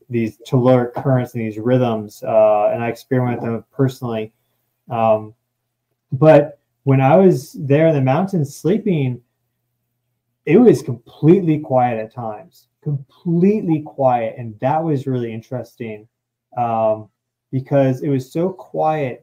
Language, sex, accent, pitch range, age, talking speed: English, male, American, 115-145 Hz, 20-39, 135 wpm